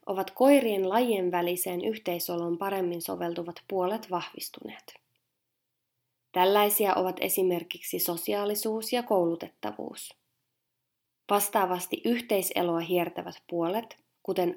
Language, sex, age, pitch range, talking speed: Finnish, female, 20-39, 175-220 Hz, 80 wpm